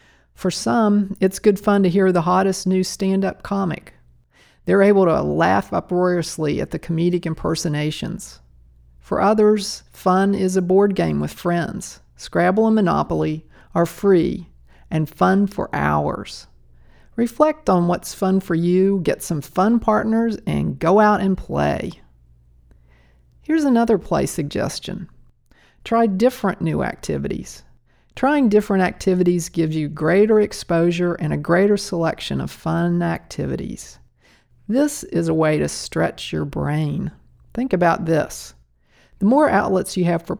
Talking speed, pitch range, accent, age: 140 wpm, 145-195 Hz, American, 50-69